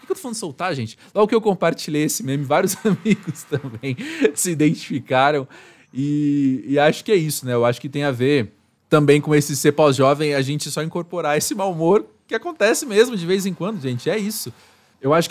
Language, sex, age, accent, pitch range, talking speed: Portuguese, male, 20-39, Brazilian, 140-190 Hz, 215 wpm